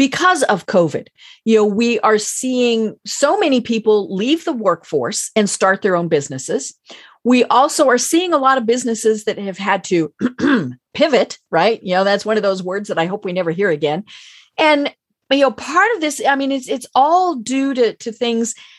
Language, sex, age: English, female, 40-59